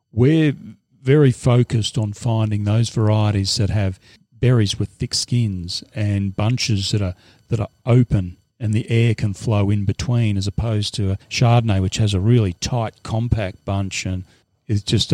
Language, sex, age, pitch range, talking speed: English, male, 40-59, 105-120 Hz, 170 wpm